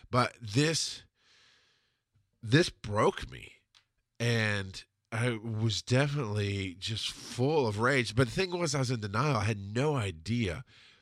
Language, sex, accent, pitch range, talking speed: English, male, American, 100-130 Hz, 135 wpm